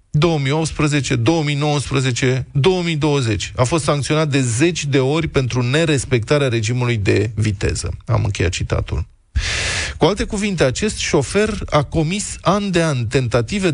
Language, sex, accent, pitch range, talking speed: Romanian, male, native, 110-150 Hz, 125 wpm